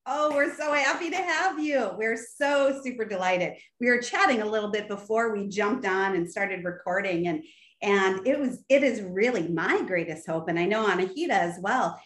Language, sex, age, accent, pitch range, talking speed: English, female, 40-59, American, 190-255 Hz, 200 wpm